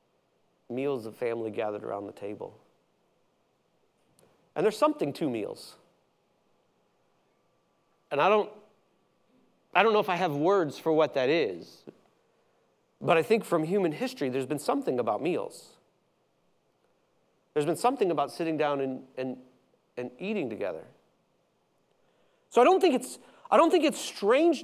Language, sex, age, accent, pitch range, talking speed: English, male, 40-59, American, 180-240 Hz, 140 wpm